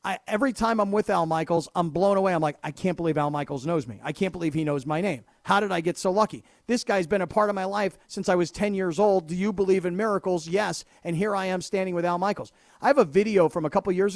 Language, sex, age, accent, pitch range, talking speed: English, male, 40-59, American, 180-225 Hz, 285 wpm